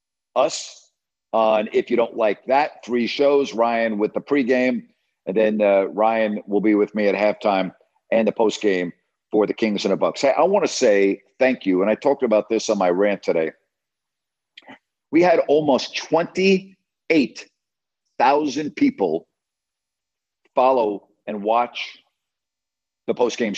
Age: 50-69